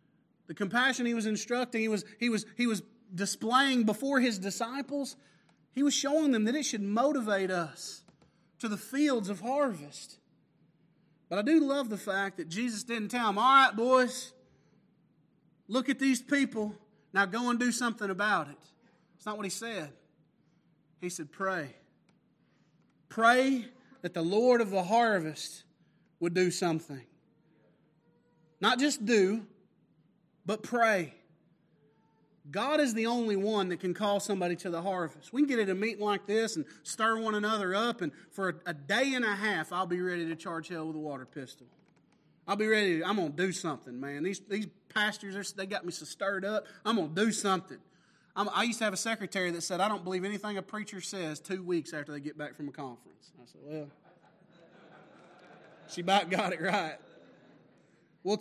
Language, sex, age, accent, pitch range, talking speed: English, male, 30-49, American, 170-230 Hz, 185 wpm